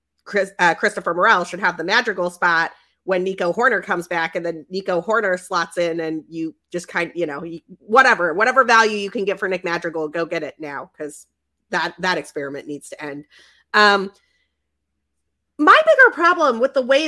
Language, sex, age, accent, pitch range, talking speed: English, female, 30-49, American, 180-255 Hz, 185 wpm